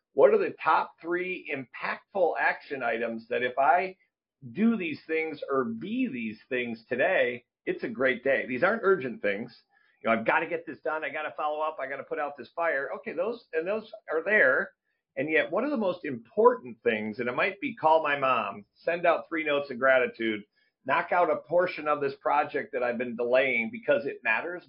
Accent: American